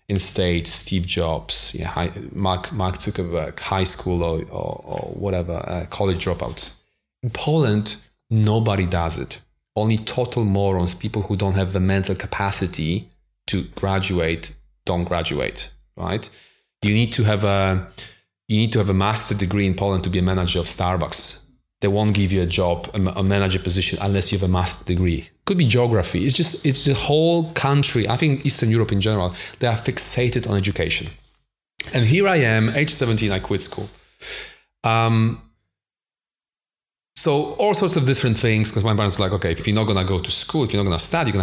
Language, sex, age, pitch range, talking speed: English, male, 30-49, 90-115 Hz, 185 wpm